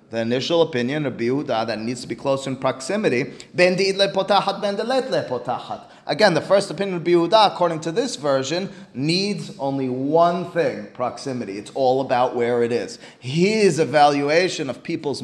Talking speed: 175 wpm